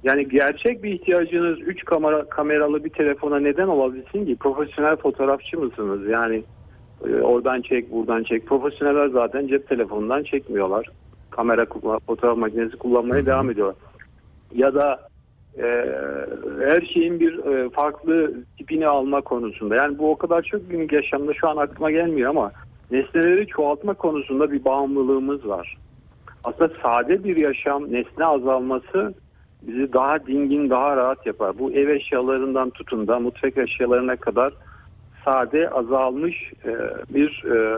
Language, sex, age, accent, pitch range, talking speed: Turkish, male, 50-69, native, 120-155 Hz, 135 wpm